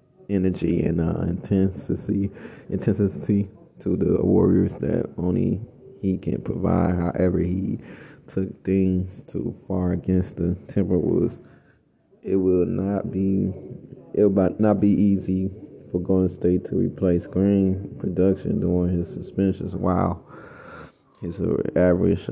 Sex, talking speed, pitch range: male, 120 wpm, 90-100 Hz